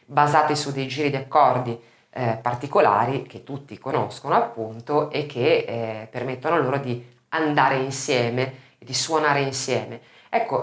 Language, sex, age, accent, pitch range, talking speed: Italian, female, 30-49, native, 130-175 Hz, 135 wpm